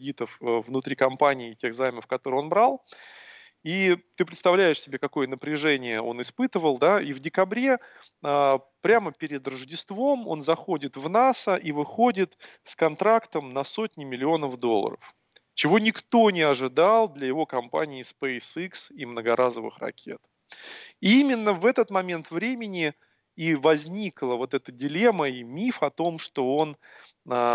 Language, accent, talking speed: Russian, native, 135 wpm